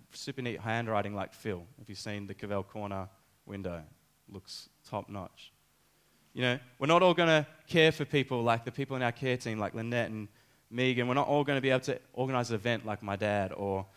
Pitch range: 105-125 Hz